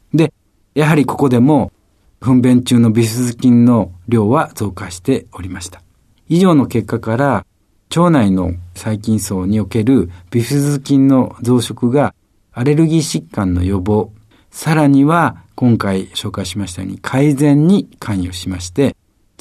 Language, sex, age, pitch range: Japanese, male, 50-69, 95-145 Hz